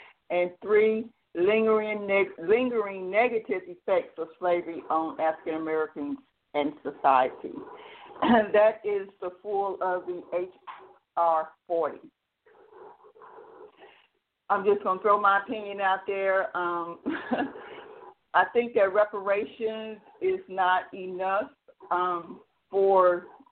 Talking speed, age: 100 wpm, 50-69